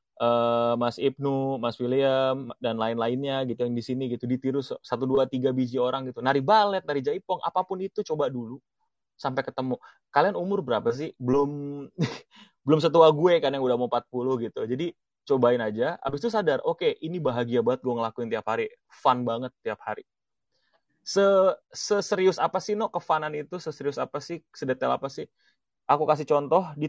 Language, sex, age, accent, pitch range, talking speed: Indonesian, male, 20-39, native, 125-160 Hz, 180 wpm